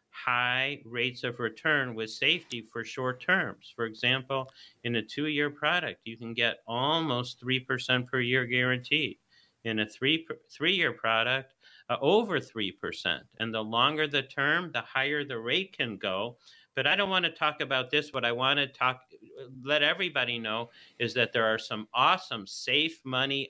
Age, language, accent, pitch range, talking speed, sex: 50-69, English, American, 120-145 Hz, 170 wpm, male